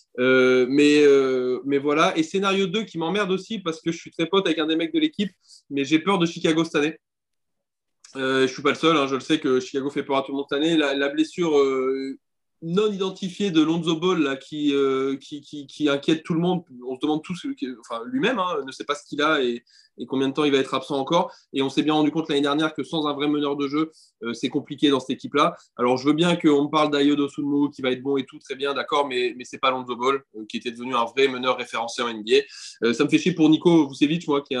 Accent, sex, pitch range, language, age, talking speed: French, male, 135-165 Hz, French, 20-39, 275 wpm